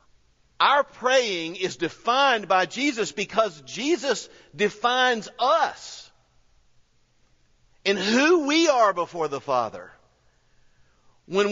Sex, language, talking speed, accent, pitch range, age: male, English, 95 wpm, American, 150-205 Hz, 50-69